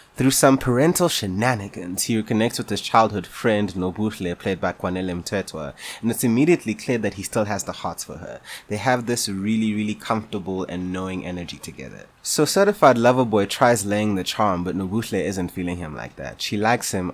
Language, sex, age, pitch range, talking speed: English, male, 20-39, 90-120 Hz, 195 wpm